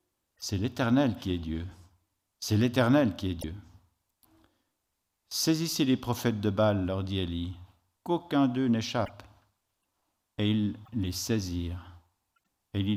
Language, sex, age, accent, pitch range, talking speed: French, male, 50-69, French, 95-120 Hz, 130 wpm